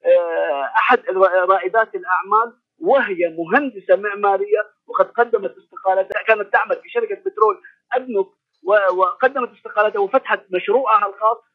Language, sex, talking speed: Arabic, male, 105 wpm